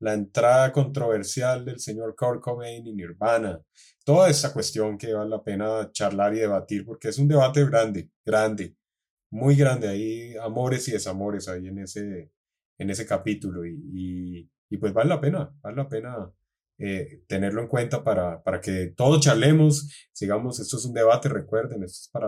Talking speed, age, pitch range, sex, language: 175 wpm, 20-39, 105-140 Hz, male, English